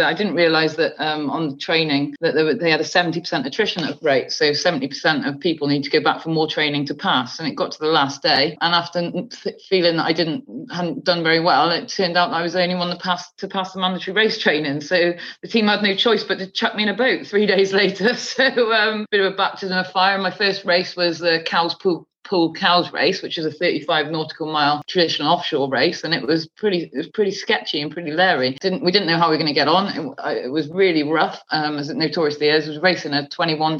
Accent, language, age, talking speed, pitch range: British, English, 30-49, 250 wpm, 160-195 Hz